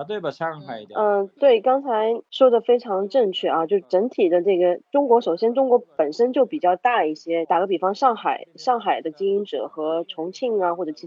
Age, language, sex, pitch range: 30-49, Chinese, female, 180-260 Hz